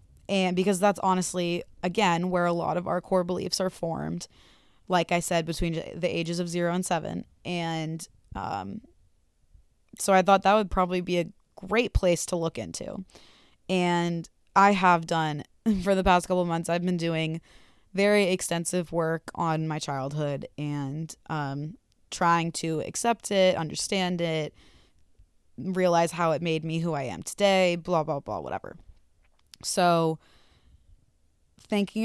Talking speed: 150 wpm